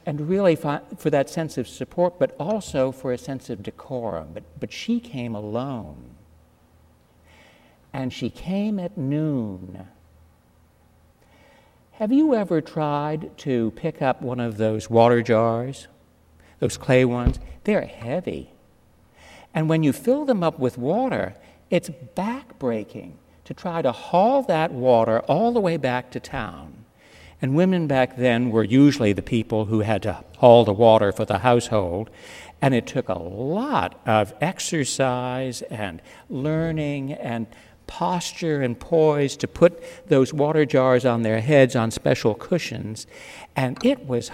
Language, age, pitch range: English, 60-79, 115-165 Hz